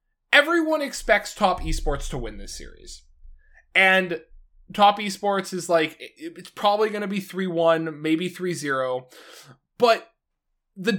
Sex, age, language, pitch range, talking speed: male, 20-39, English, 145-195 Hz, 125 wpm